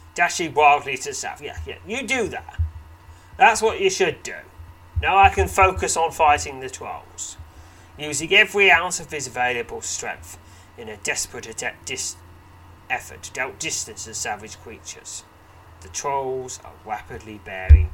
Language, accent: English, British